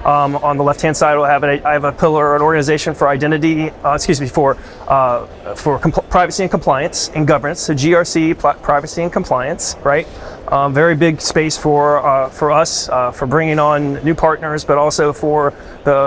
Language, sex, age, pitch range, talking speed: English, male, 30-49, 145-165 Hz, 200 wpm